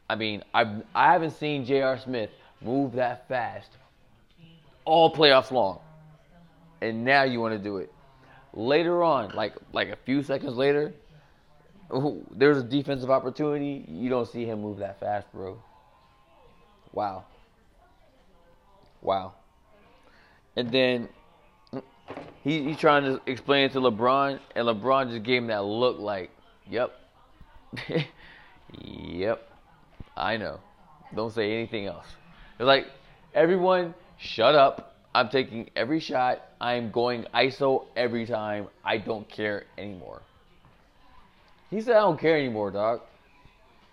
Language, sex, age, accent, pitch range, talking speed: English, male, 20-39, American, 120-160 Hz, 130 wpm